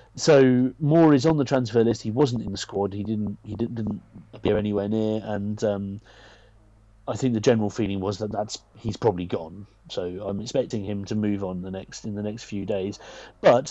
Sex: male